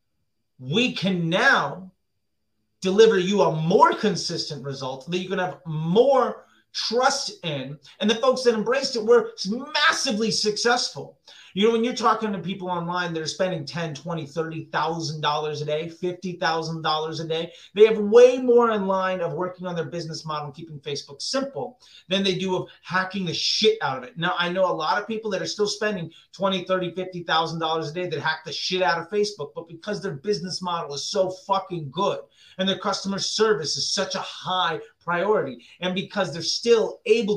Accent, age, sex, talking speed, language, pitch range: American, 30-49, male, 185 wpm, English, 165-210 Hz